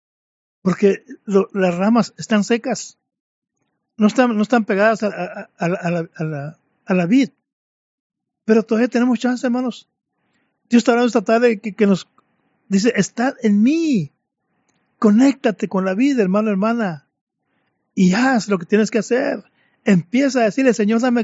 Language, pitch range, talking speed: Spanish, 195-235 Hz, 160 wpm